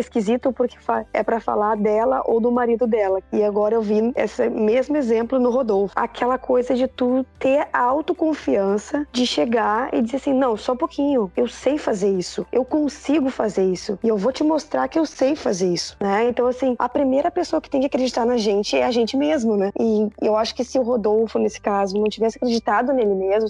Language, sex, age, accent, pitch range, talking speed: Portuguese, female, 20-39, Brazilian, 215-265 Hz, 210 wpm